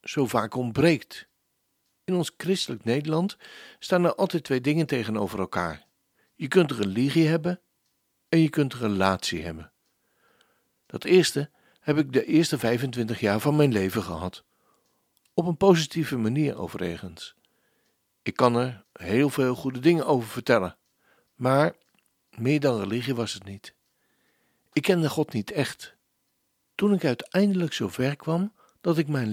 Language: Dutch